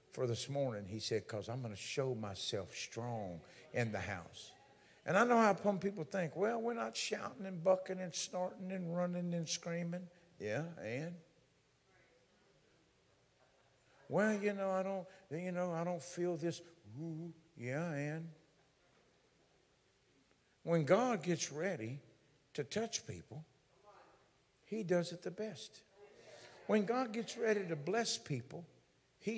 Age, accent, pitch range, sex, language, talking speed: 60-79, American, 140-190 Hz, male, English, 140 wpm